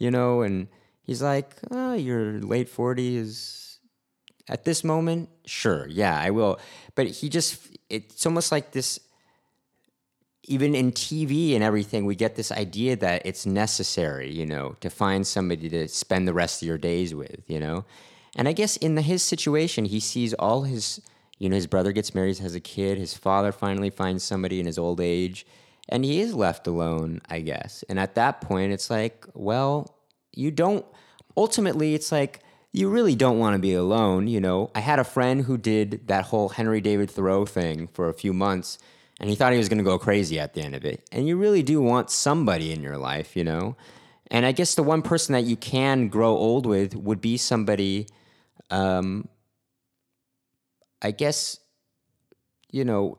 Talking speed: 190 wpm